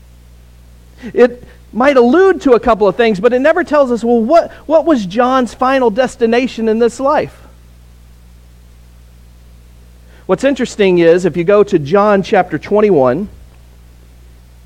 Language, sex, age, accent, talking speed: English, male, 40-59, American, 135 wpm